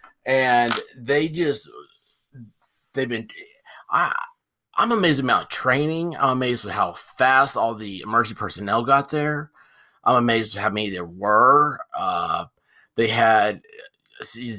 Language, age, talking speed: English, 30-49, 115 wpm